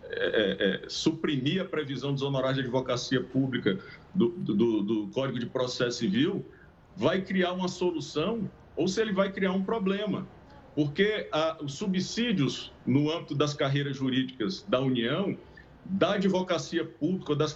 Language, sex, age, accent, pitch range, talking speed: Portuguese, male, 50-69, Brazilian, 145-200 Hz, 145 wpm